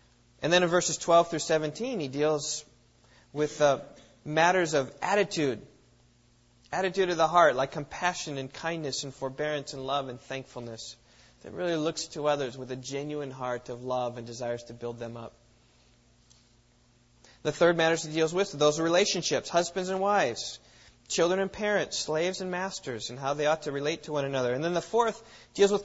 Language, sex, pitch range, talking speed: English, male, 130-180 Hz, 180 wpm